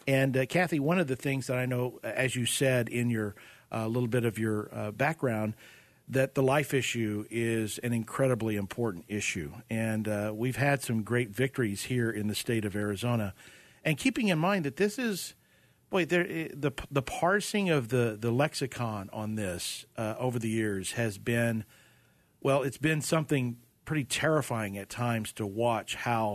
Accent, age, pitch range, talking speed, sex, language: American, 50-69, 110-135 Hz, 185 wpm, male, English